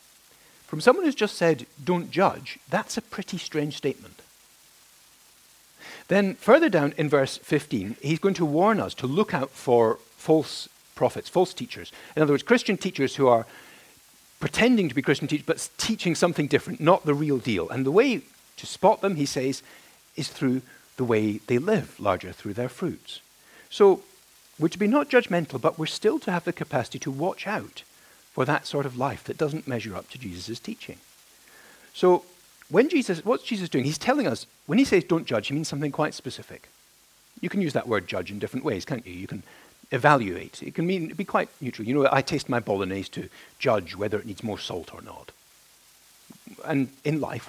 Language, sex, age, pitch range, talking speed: English, male, 50-69, 125-180 Hz, 195 wpm